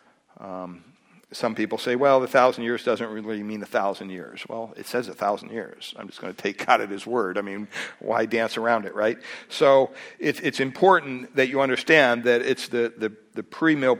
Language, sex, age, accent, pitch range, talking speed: English, male, 60-79, American, 110-130 Hz, 200 wpm